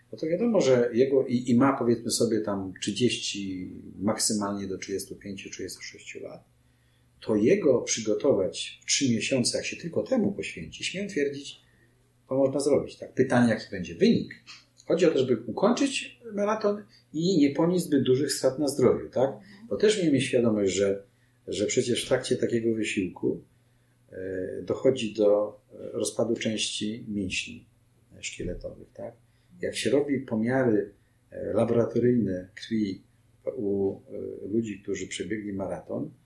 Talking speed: 135 wpm